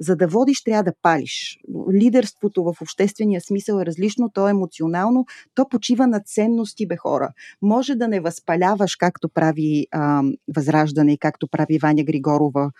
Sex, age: female, 30-49